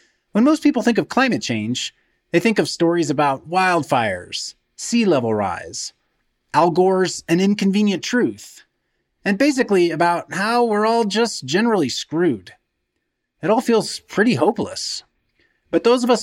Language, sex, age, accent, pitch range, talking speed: English, male, 30-49, American, 155-245 Hz, 145 wpm